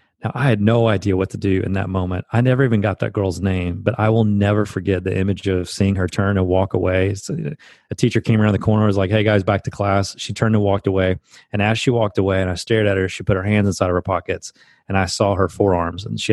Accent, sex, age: American, male, 30-49